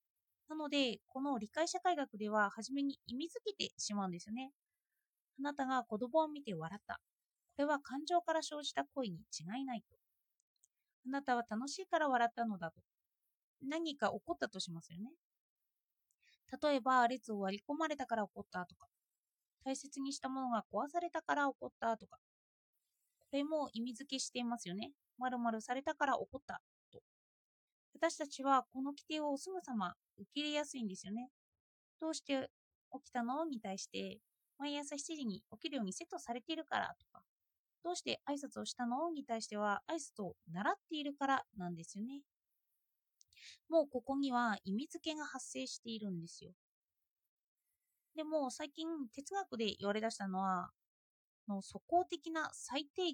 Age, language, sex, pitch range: 20-39, Japanese, female, 220-305 Hz